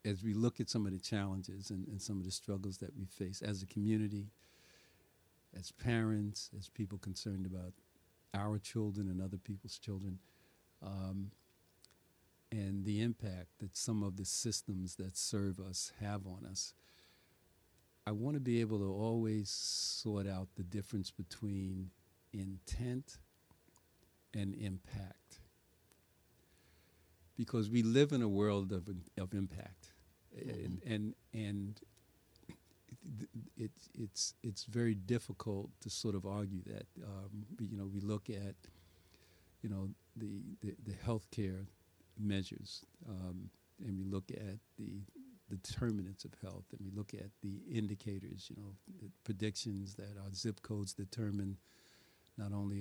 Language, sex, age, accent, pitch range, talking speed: English, male, 50-69, American, 95-105 Hz, 140 wpm